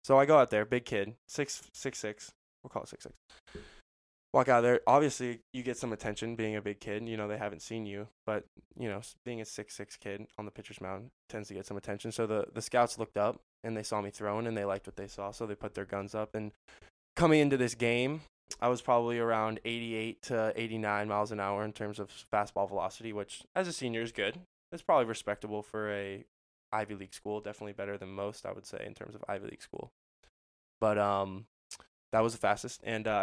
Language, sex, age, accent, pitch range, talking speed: English, male, 10-29, American, 100-115 Hz, 235 wpm